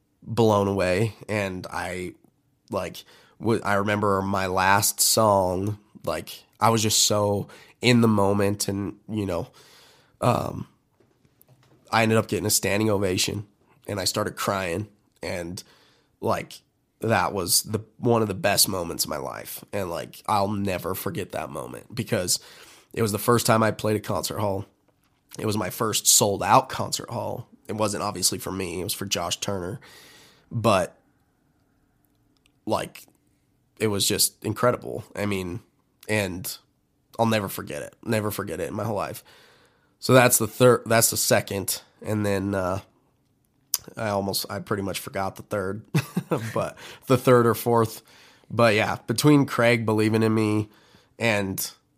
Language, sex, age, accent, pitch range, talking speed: English, male, 20-39, American, 100-115 Hz, 155 wpm